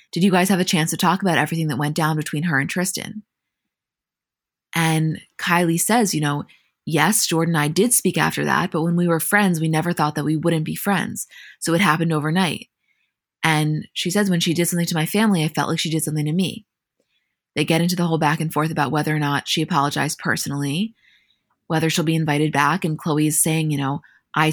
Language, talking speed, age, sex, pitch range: English, 225 wpm, 20-39, female, 150-180 Hz